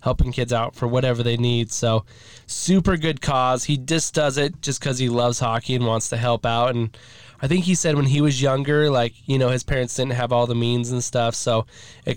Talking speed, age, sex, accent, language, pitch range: 235 wpm, 20-39, male, American, English, 115-135 Hz